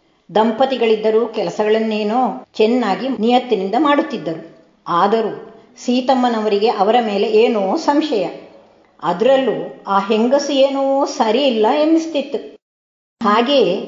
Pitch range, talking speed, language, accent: 215-265 Hz, 80 wpm, Kannada, native